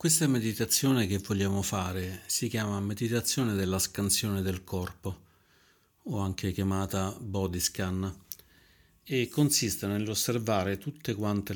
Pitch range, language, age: 95-110 Hz, Italian, 40-59